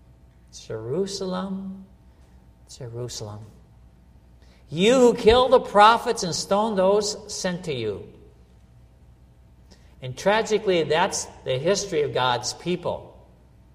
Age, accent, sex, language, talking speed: 60-79, American, male, English, 90 wpm